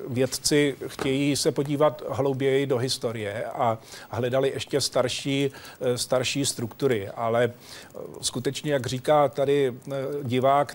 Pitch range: 125-145 Hz